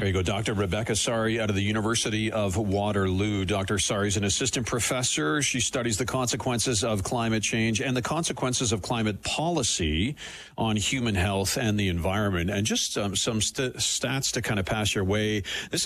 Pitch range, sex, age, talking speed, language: 95-120 Hz, male, 50-69, 190 wpm, English